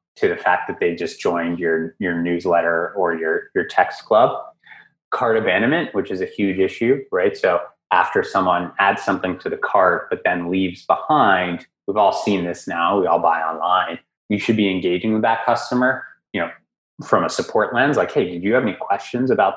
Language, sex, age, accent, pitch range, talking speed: English, male, 20-39, American, 90-120 Hz, 200 wpm